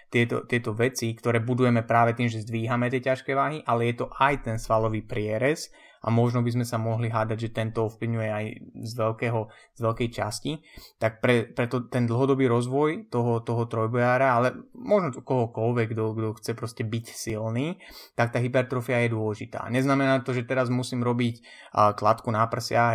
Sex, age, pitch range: male, 20-39, 110-125 Hz